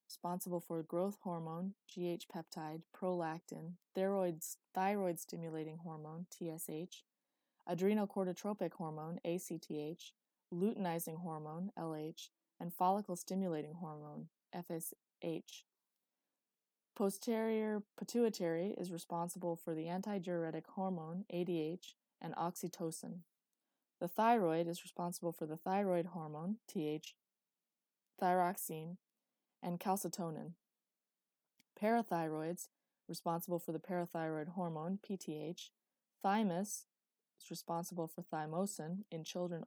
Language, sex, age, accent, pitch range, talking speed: English, female, 20-39, American, 165-195 Hz, 85 wpm